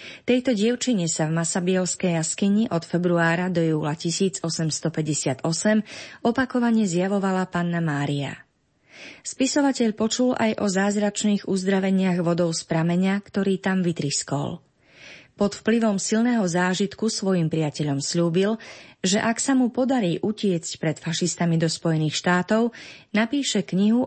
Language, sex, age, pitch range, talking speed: Slovak, female, 30-49, 165-215 Hz, 115 wpm